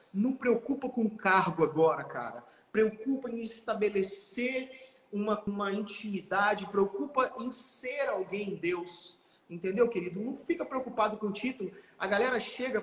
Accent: Brazilian